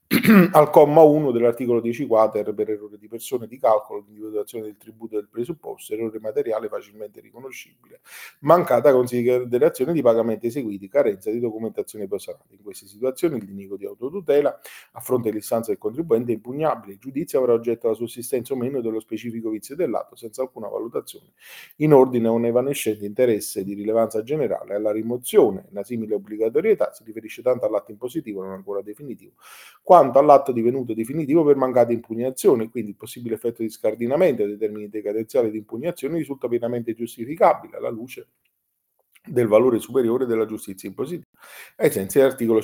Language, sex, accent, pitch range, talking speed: Italian, male, native, 110-135 Hz, 160 wpm